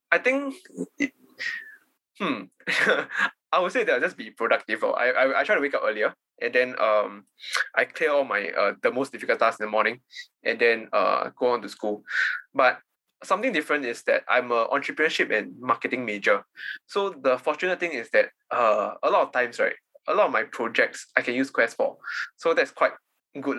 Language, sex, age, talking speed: English, male, 20-39, 200 wpm